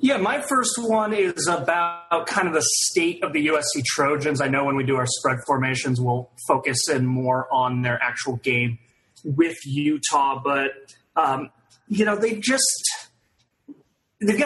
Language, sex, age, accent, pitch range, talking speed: English, male, 30-49, American, 130-160 Hz, 160 wpm